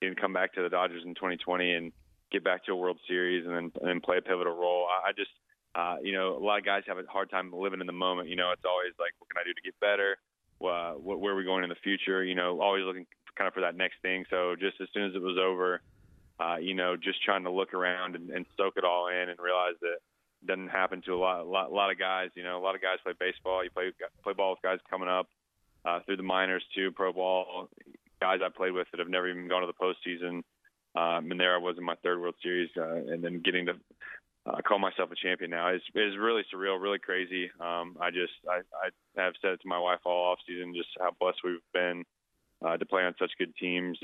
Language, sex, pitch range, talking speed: English, male, 90-95 Hz, 265 wpm